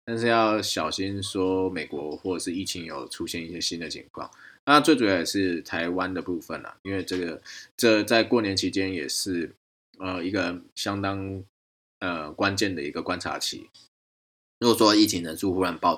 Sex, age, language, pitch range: male, 20-39, Chinese, 85-105 Hz